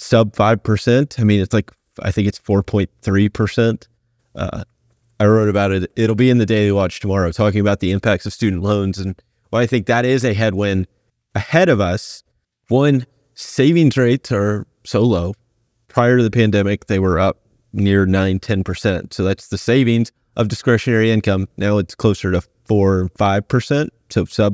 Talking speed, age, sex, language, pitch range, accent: 170 wpm, 30-49, male, English, 100-120 Hz, American